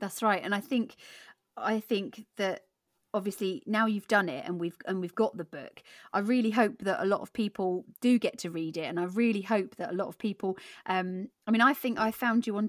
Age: 30-49